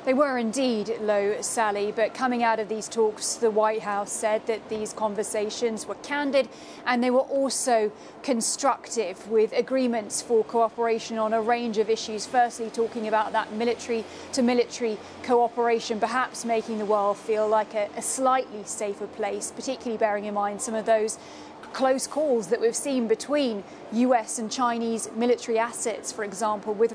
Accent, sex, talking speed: British, female, 160 wpm